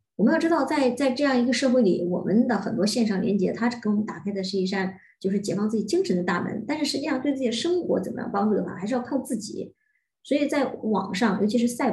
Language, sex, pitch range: Chinese, male, 190-240 Hz